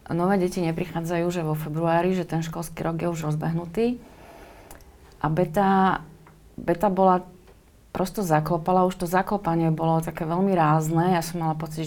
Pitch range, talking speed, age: 160-190 Hz, 150 wpm, 30-49